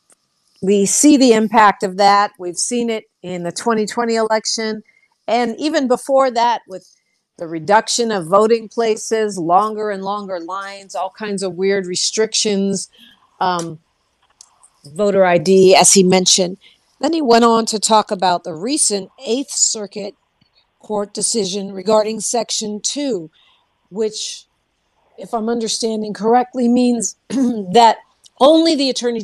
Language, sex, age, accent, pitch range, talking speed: English, female, 50-69, American, 190-230 Hz, 130 wpm